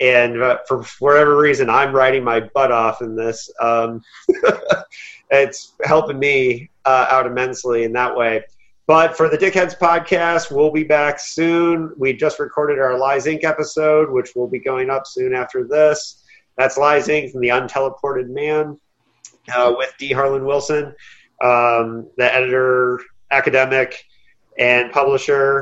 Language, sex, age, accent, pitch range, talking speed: English, male, 30-49, American, 130-155 Hz, 150 wpm